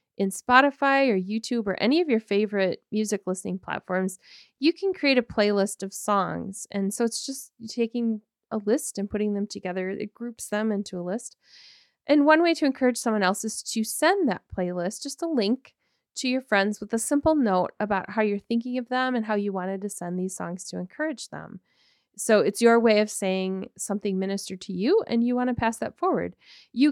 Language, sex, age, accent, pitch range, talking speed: English, female, 30-49, American, 195-245 Hz, 205 wpm